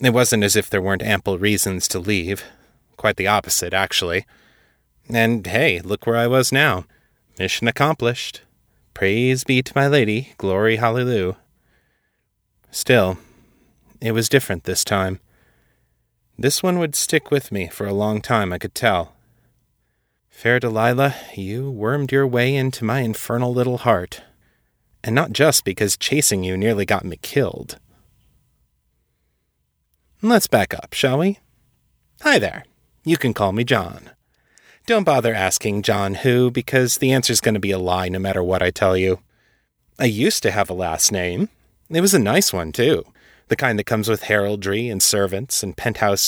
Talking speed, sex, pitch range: 160 wpm, male, 100-130 Hz